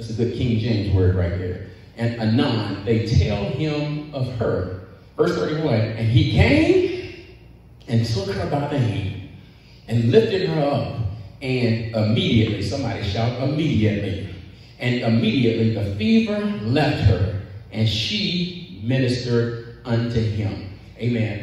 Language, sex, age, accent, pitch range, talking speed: English, male, 40-59, American, 100-120 Hz, 130 wpm